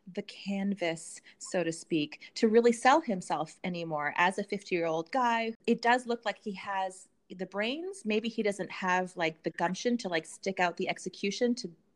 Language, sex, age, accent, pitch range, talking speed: English, female, 30-49, American, 170-215 Hz, 190 wpm